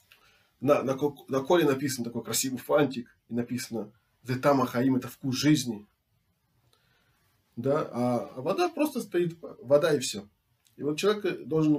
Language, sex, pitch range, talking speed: Russian, male, 120-150 Hz, 135 wpm